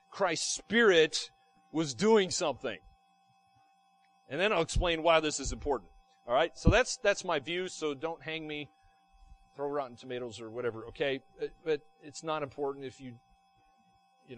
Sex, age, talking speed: male, 40-59, 155 wpm